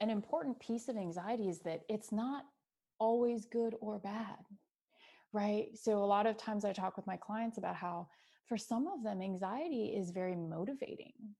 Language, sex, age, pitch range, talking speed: English, female, 30-49, 185-230 Hz, 180 wpm